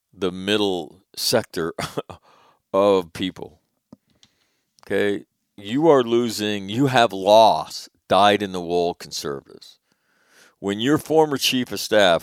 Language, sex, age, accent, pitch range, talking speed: English, male, 50-69, American, 90-115 Hz, 115 wpm